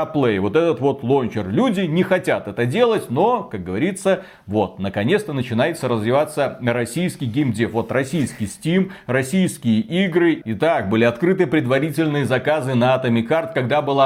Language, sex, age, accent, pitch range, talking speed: Russian, male, 40-59, native, 120-170 Hz, 145 wpm